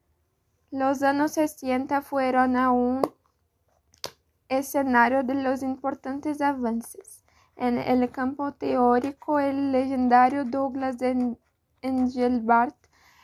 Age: 10-29